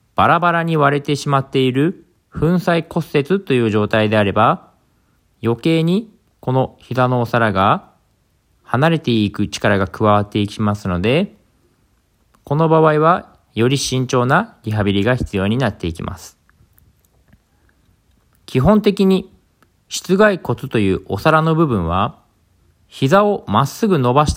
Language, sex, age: Japanese, male, 40-59